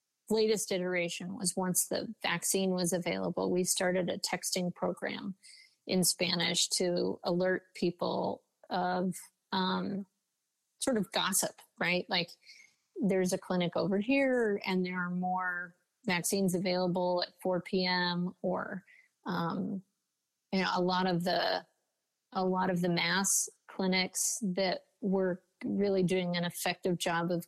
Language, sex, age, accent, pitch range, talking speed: English, female, 30-49, American, 180-195 Hz, 135 wpm